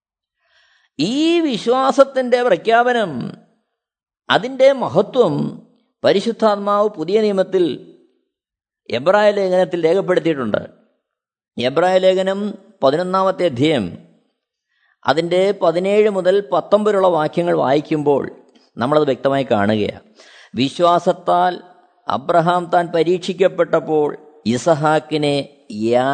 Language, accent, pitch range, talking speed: Malayalam, native, 160-205 Hz, 65 wpm